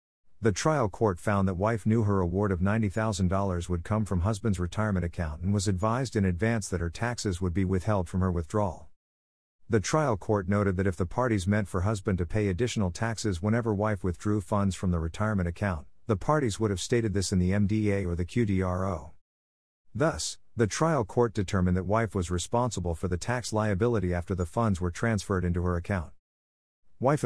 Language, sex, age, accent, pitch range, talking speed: English, male, 50-69, American, 90-110 Hz, 195 wpm